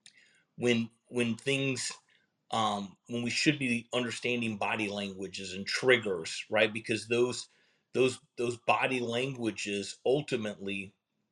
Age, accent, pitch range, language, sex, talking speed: 30-49, American, 105-135 Hz, English, male, 110 wpm